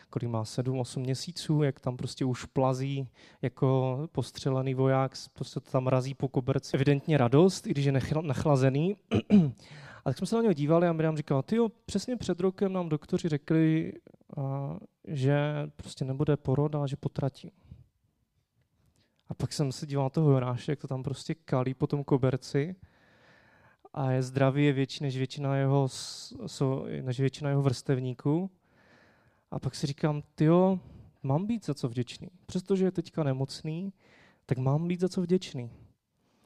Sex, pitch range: male, 130-170 Hz